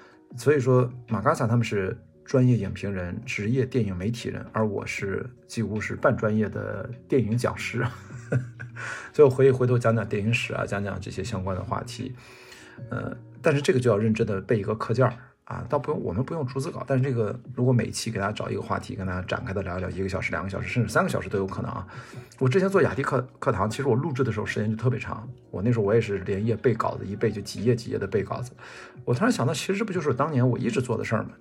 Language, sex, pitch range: Chinese, male, 105-125 Hz